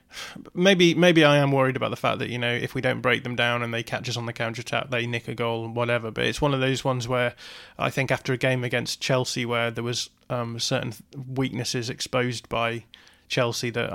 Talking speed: 235 wpm